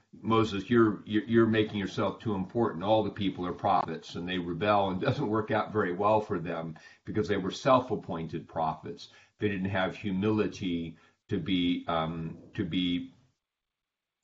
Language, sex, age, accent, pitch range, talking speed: English, male, 50-69, American, 85-105 Hz, 160 wpm